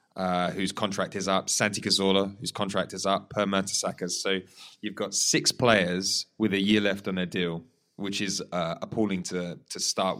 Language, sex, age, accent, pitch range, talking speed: English, male, 20-39, British, 95-110 Hz, 190 wpm